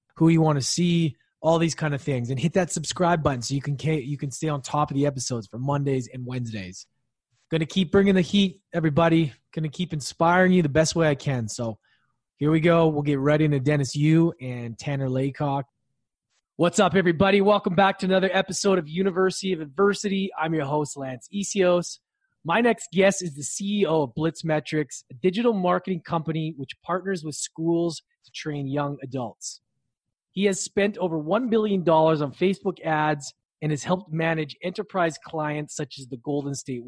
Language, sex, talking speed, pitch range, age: English, male, 190 wpm, 140-180 Hz, 20-39